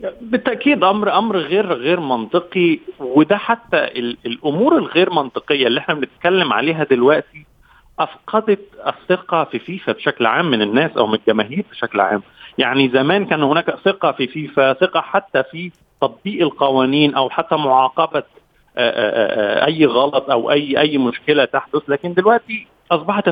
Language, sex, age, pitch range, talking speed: Arabic, male, 40-59, 135-195 Hz, 150 wpm